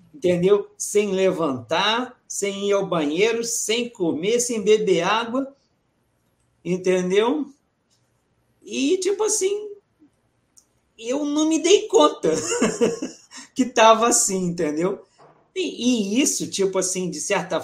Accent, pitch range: Brazilian, 155-230 Hz